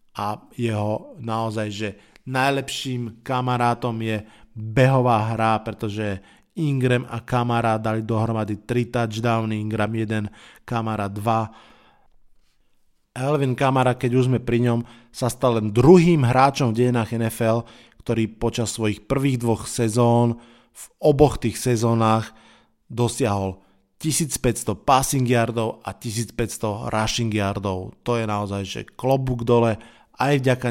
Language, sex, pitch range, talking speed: Slovak, male, 110-125 Hz, 115 wpm